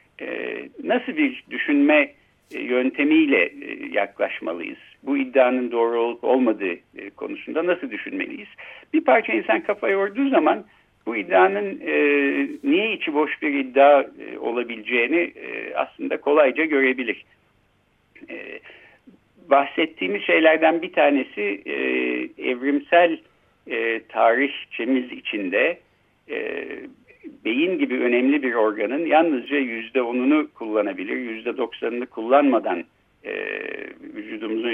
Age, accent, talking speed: 60-79, native, 105 wpm